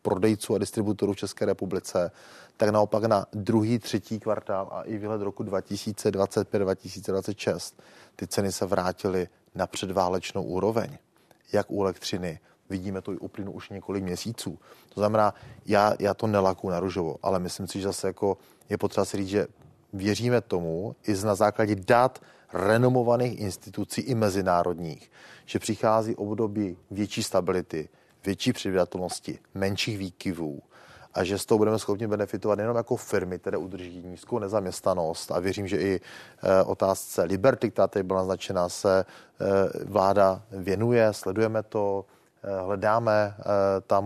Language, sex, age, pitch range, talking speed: Czech, male, 30-49, 95-110 Hz, 145 wpm